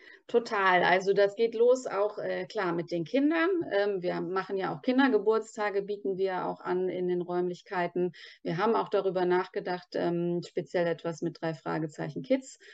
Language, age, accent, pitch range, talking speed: German, 30-49, German, 175-225 Hz, 170 wpm